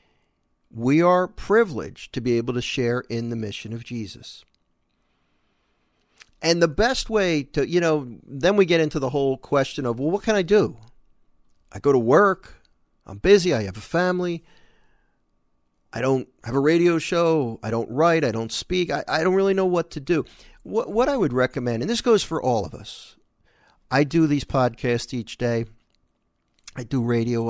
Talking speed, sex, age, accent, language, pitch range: 185 wpm, male, 40-59, American, English, 115-170 Hz